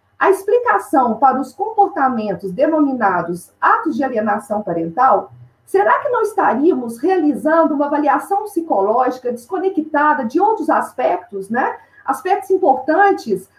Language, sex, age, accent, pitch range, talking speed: Portuguese, female, 40-59, Brazilian, 265-385 Hz, 110 wpm